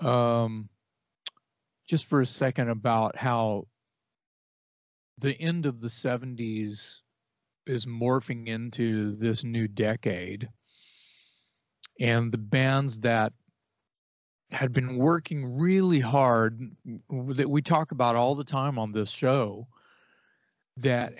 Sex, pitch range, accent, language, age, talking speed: male, 110-130 Hz, American, English, 40-59, 110 wpm